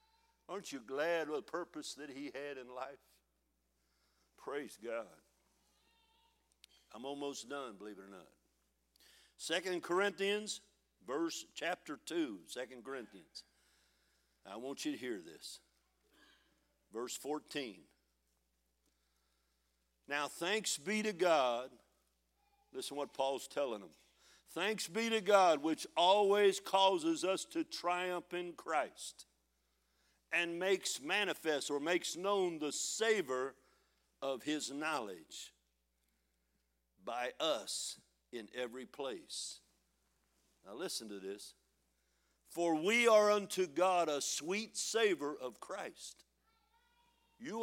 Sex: male